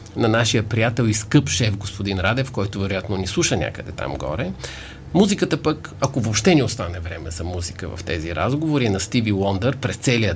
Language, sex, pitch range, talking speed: Bulgarian, male, 105-150 Hz, 190 wpm